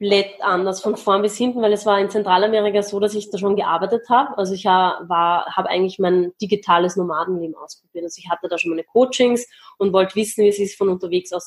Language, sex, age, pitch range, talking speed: German, female, 20-39, 180-210 Hz, 220 wpm